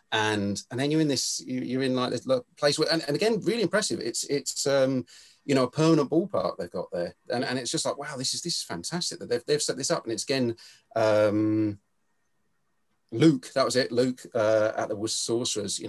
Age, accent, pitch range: 30-49, British, 105-140 Hz